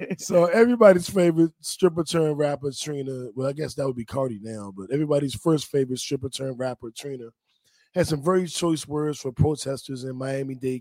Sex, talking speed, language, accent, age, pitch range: male, 180 wpm, English, American, 20-39, 120-140 Hz